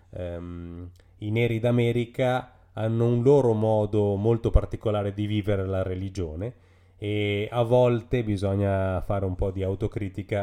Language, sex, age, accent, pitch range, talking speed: Italian, male, 30-49, native, 95-110 Hz, 125 wpm